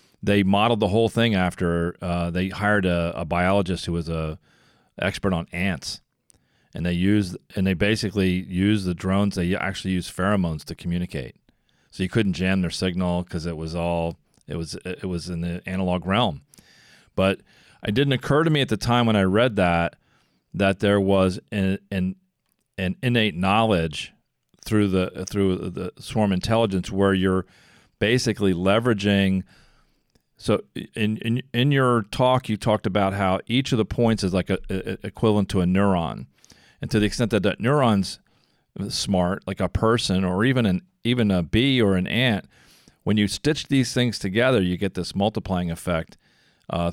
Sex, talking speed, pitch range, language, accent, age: male, 175 wpm, 90-110 Hz, English, American, 40-59